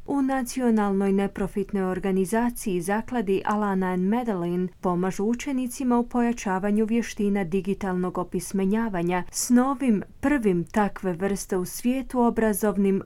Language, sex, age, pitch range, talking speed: Croatian, female, 30-49, 185-230 Hz, 100 wpm